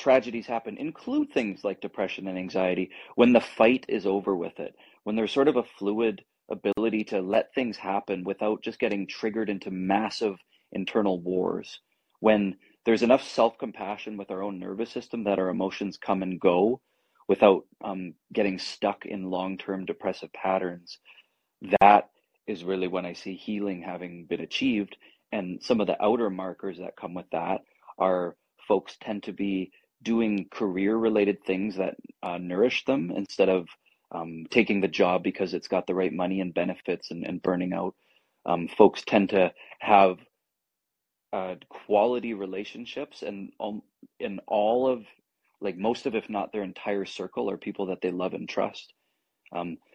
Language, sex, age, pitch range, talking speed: English, male, 30-49, 95-110 Hz, 165 wpm